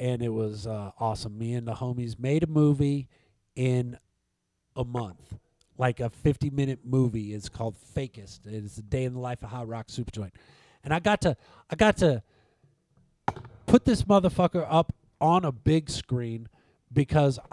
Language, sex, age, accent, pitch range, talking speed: English, male, 50-69, American, 120-155 Hz, 170 wpm